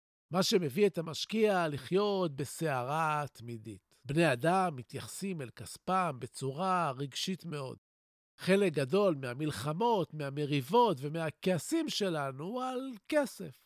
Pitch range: 140-210 Hz